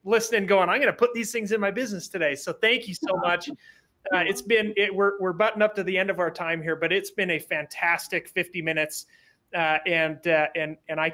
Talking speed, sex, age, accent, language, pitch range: 240 wpm, male, 30-49, American, English, 170-205 Hz